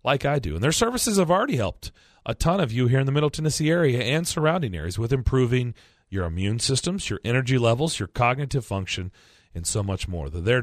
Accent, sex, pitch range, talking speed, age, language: American, male, 105-170 Hz, 220 wpm, 40-59, English